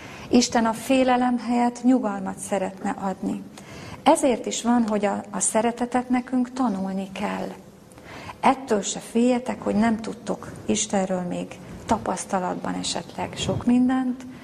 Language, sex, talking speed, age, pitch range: Hungarian, female, 120 wpm, 30-49, 195-230 Hz